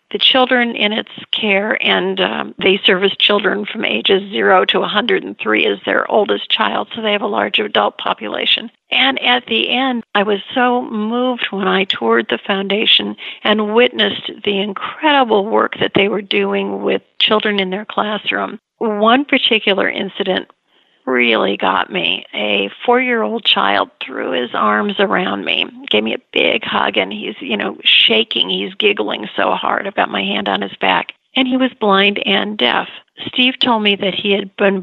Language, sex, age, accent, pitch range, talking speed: English, female, 50-69, American, 200-245 Hz, 170 wpm